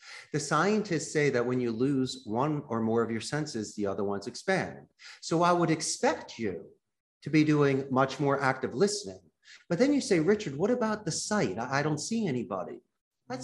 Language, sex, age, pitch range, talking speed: English, male, 40-59, 125-175 Hz, 190 wpm